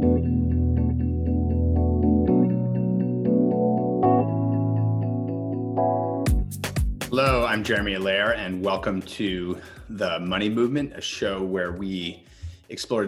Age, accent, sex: 30-49, American, male